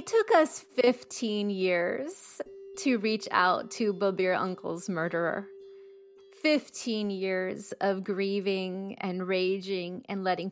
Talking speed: 115 wpm